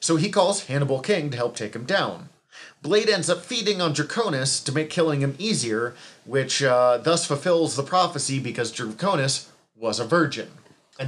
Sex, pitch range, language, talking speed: male, 120-155 Hz, English, 180 wpm